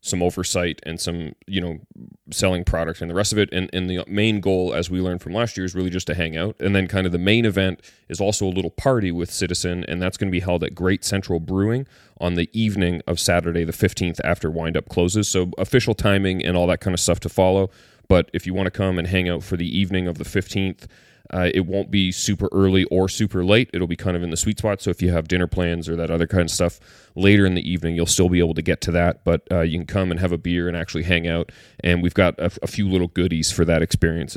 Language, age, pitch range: English, 30-49, 85-95 Hz